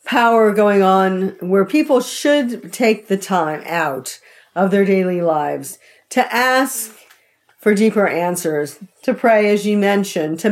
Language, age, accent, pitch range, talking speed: English, 50-69, American, 180-225 Hz, 145 wpm